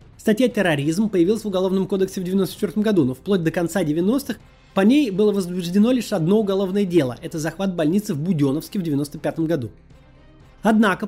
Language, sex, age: Russian, male, 20-39